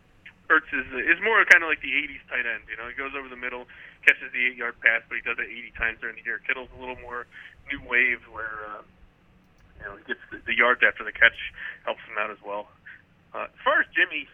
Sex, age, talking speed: male, 30-49, 245 wpm